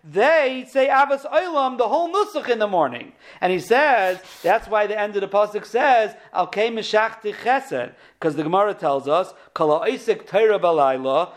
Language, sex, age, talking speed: English, male, 50-69, 150 wpm